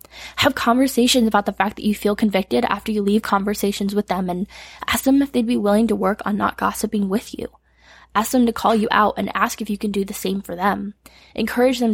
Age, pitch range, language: 10-29, 190-235 Hz, English